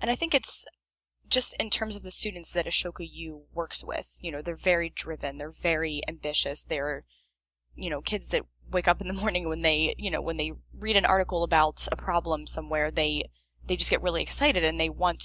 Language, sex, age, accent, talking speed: English, female, 10-29, American, 215 wpm